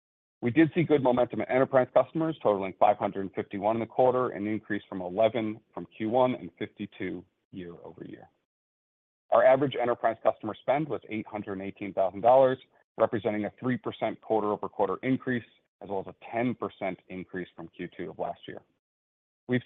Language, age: English, 40-59